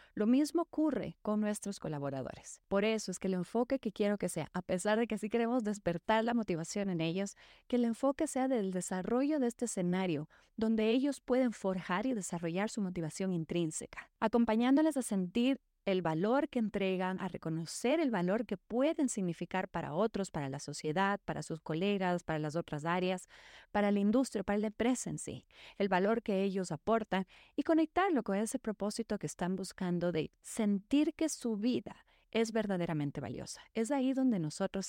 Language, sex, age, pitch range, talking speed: Spanish, female, 30-49, 180-240 Hz, 175 wpm